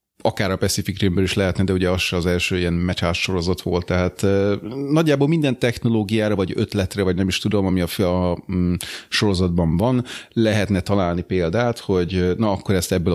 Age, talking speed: 30-49, 185 wpm